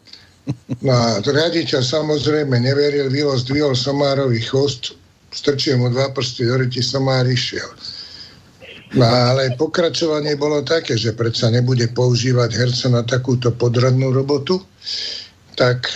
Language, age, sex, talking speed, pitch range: Slovak, 60-79, male, 120 wpm, 120-140 Hz